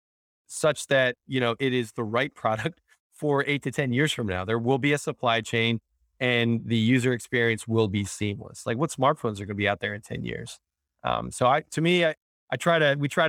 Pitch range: 105-130 Hz